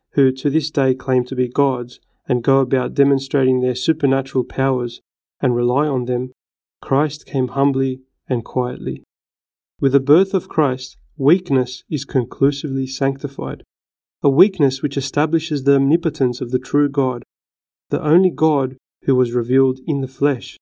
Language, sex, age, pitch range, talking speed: Greek, male, 30-49, 125-145 Hz, 150 wpm